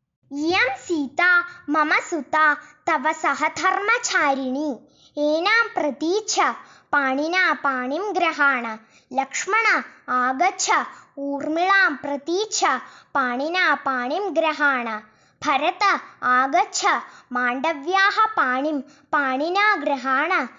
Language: Malayalam